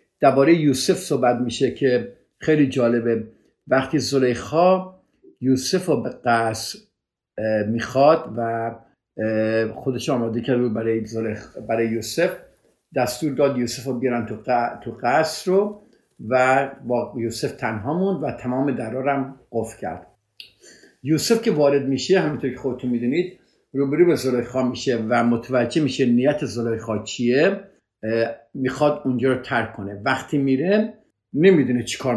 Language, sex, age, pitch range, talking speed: Persian, male, 50-69, 115-150 Hz, 130 wpm